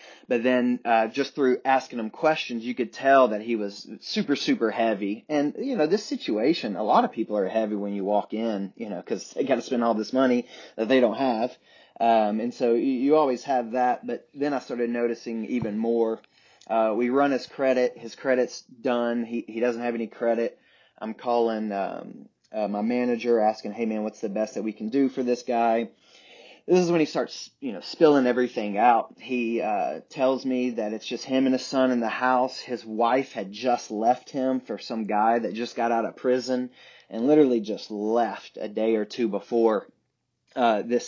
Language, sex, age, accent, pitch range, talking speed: English, male, 30-49, American, 110-130 Hz, 210 wpm